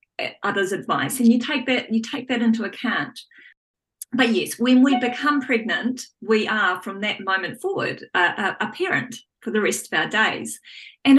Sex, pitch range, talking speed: female, 205-255 Hz, 180 wpm